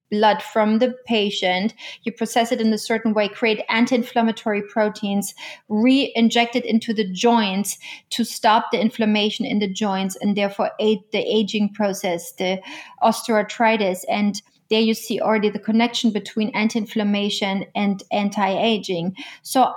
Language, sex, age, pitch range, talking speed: English, female, 30-49, 210-235 Hz, 140 wpm